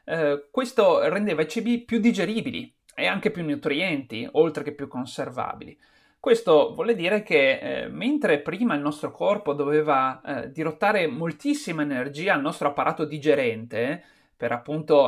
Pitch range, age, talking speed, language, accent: 145-215 Hz, 30-49, 145 wpm, Italian, native